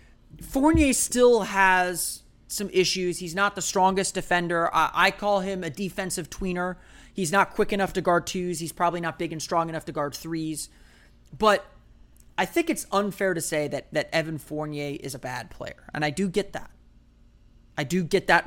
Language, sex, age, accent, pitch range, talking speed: English, male, 30-49, American, 155-205 Hz, 190 wpm